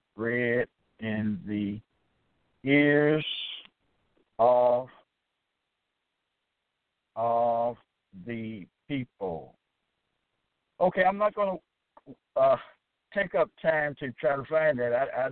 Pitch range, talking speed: 125-170 Hz, 95 wpm